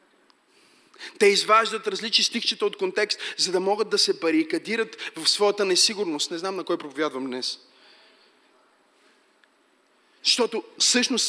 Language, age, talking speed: Bulgarian, 30-49, 120 wpm